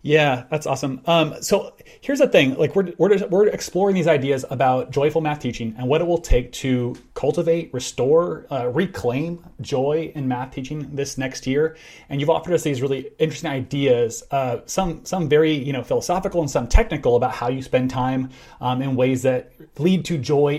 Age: 30-49